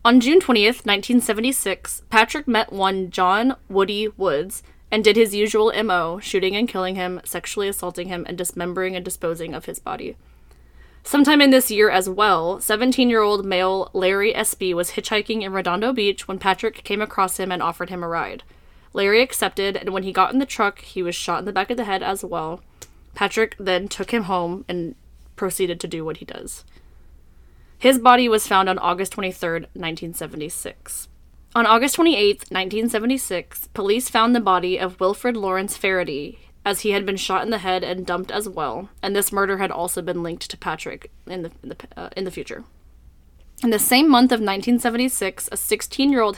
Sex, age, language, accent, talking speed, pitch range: female, 20-39, English, American, 185 wpm, 180-220 Hz